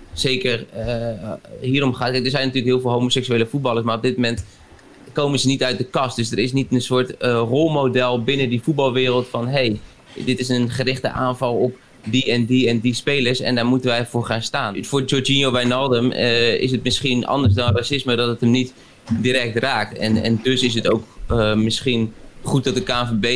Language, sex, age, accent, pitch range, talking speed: Dutch, male, 20-39, Dutch, 105-125 Hz, 210 wpm